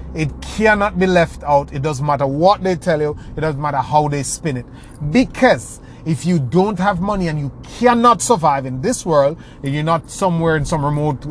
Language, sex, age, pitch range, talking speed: English, male, 30-49, 130-180 Hz, 205 wpm